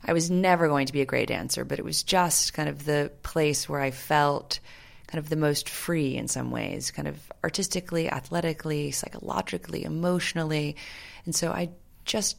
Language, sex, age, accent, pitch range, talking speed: English, female, 30-49, American, 135-165 Hz, 185 wpm